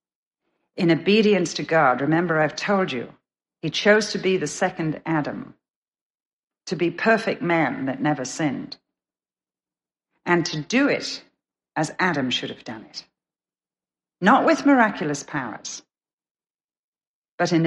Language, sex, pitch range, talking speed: English, female, 150-210 Hz, 130 wpm